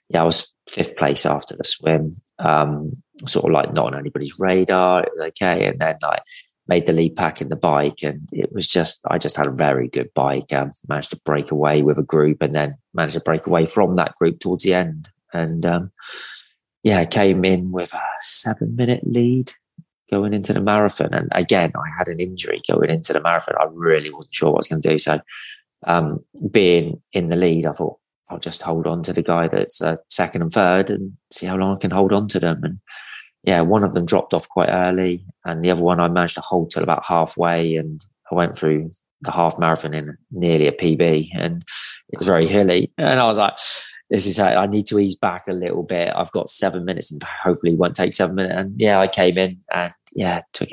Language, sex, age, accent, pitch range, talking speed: English, male, 20-39, British, 80-95 Hz, 230 wpm